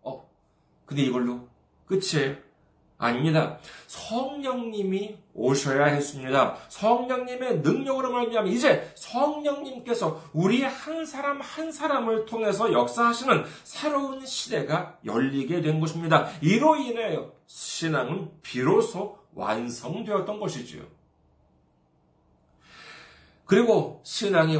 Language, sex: Korean, male